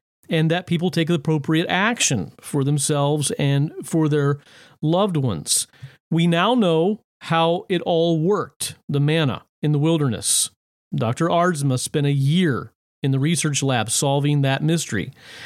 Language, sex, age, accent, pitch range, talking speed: English, male, 40-59, American, 145-180 Hz, 145 wpm